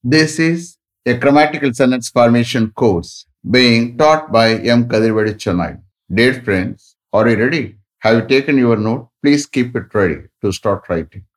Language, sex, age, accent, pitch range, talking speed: English, male, 50-69, Indian, 110-140 Hz, 160 wpm